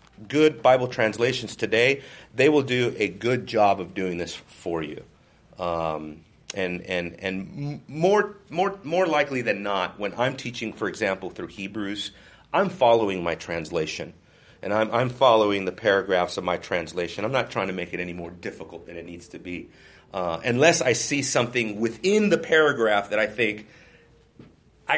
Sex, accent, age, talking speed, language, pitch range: male, American, 40-59, 170 wpm, English, 100-145 Hz